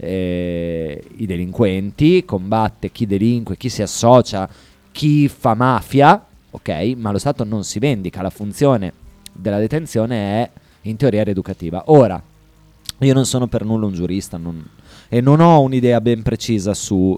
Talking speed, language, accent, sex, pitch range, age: 155 wpm, Italian, native, male, 100-125 Hz, 20-39